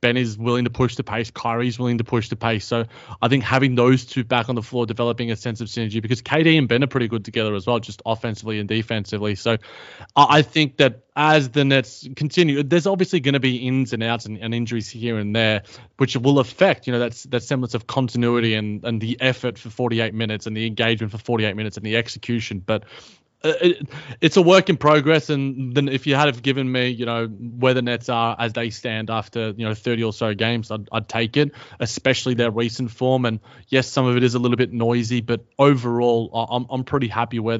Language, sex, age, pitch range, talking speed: English, male, 20-39, 115-130 Hz, 235 wpm